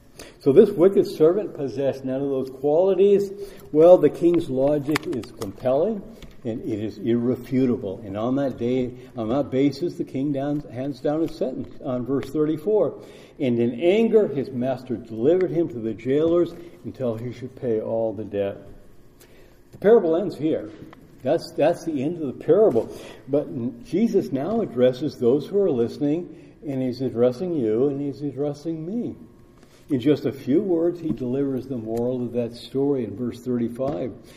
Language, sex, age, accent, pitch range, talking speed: English, male, 60-79, American, 120-155 Hz, 165 wpm